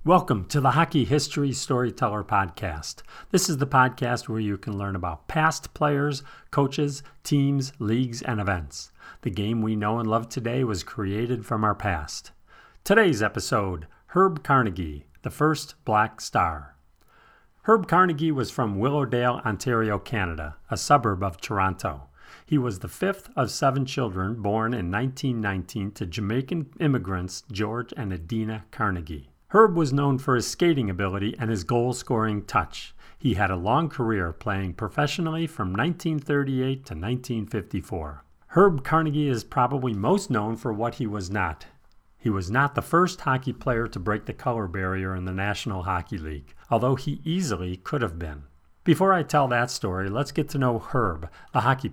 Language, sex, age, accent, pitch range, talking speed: English, male, 40-59, American, 100-140 Hz, 160 wpm